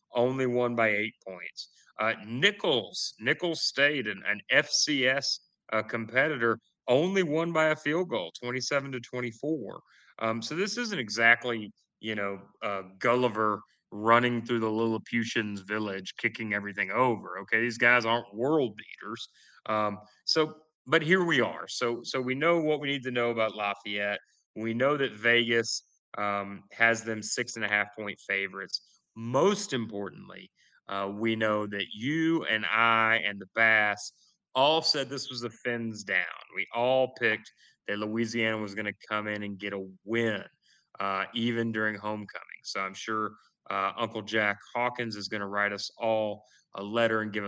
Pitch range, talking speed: 105-130 Hz, 165 wpm